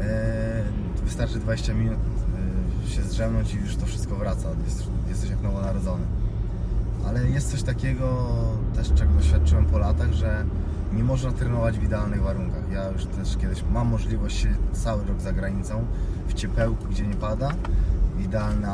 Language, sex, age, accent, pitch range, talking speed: Polish, male, 20-39, native, 100-115 Hz, 150 wpm